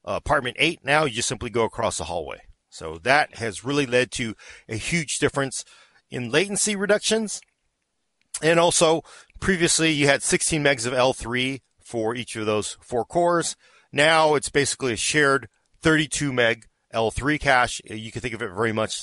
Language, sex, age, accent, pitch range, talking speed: English, male, 40-59, American, 110-145 Hz, 170 wpm